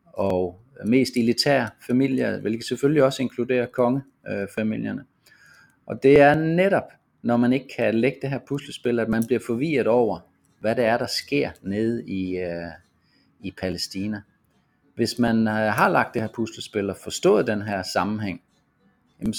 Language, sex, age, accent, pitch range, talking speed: Danish, male, 30-49, native, 100-130 Hz, 155 wpm